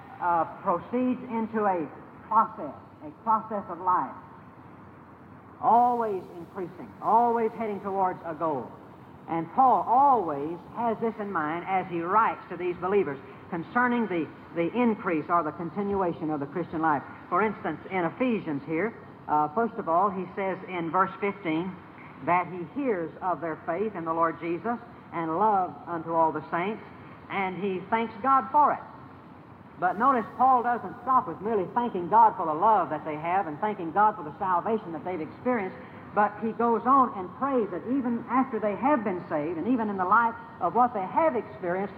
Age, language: 60-79, English